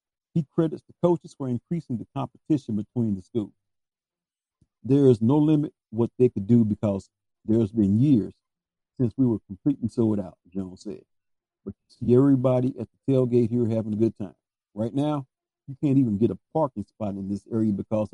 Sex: male